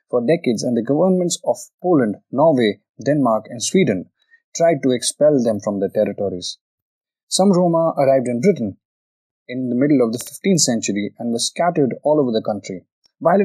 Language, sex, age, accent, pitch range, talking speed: Hindi, male, 20-39, native, 110-155 Hz, 170 wpm